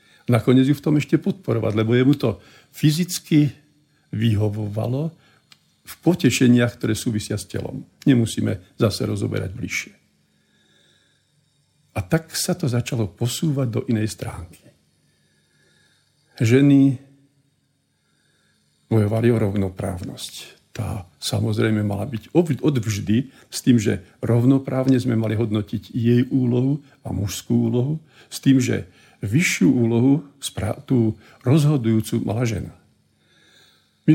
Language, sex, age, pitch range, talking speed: Slovak, male, 50-69, 110-135 Hz, 105 wpm